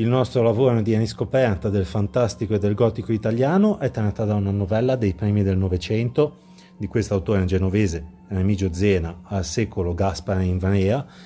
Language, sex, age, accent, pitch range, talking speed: Italian, male, 30-49, native, 100-135 Hz, 160 wpm